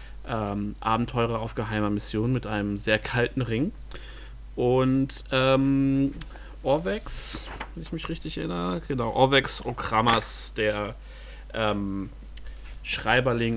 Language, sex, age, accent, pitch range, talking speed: German, male, 40-59, German, 105-140 Hz, 100 wpm